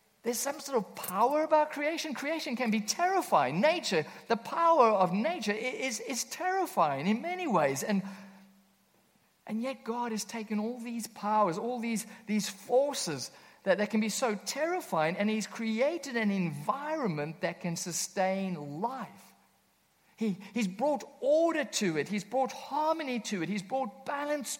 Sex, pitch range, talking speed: male, 190-265 Hz, 155 wpm